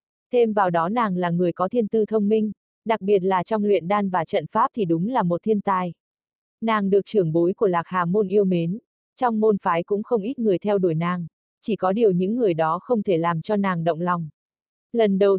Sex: female